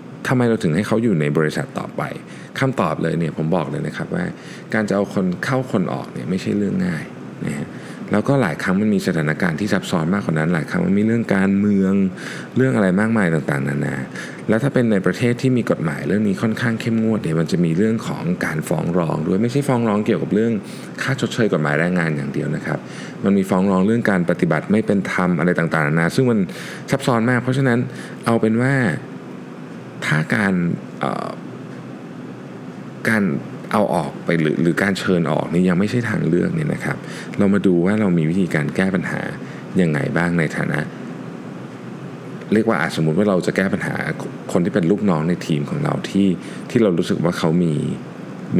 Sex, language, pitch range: male, Thai, 85-120 Hz